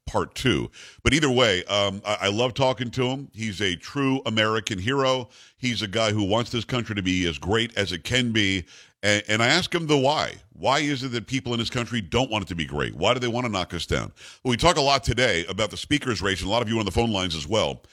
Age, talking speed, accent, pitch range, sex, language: 50-69, 275 wpm, American, 105-130 Hz, male, English